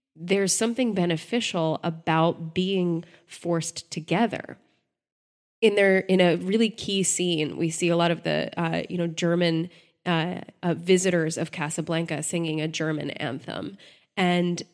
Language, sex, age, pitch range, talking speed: English, female, 20-39, 165-195 Hz, 140 wpm